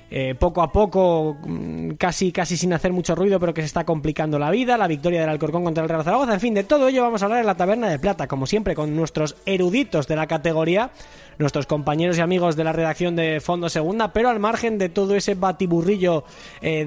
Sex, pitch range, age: male, 155-210 Hz, 20-39